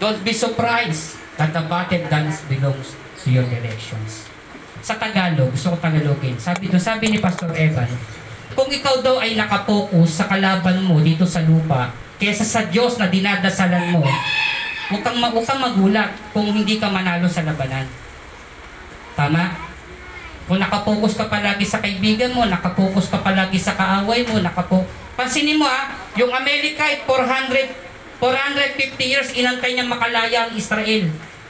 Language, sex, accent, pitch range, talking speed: Filipino, female, native, 170-250 Hz, 145 wpm